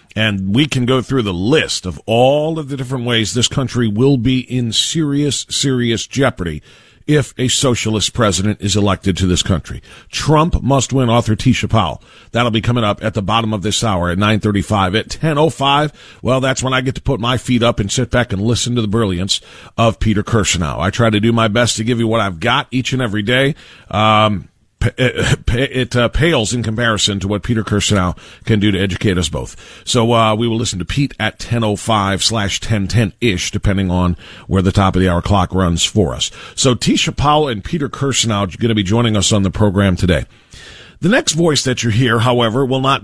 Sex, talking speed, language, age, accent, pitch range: male, 210 wpm, English, 40-59, American, 105-130 Hz